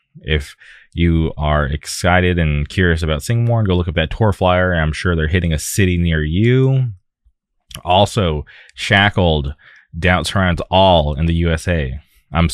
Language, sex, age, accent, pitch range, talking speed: English, male, 20-39, American, 80-90 Hz, 145 wpm